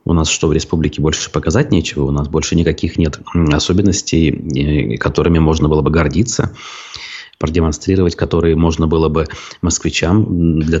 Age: 30-49